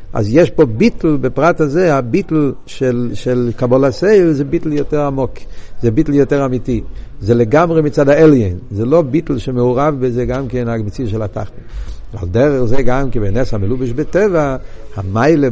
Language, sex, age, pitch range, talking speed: Hebrew, male, 60-79, 120-155 Hz, 160 wpm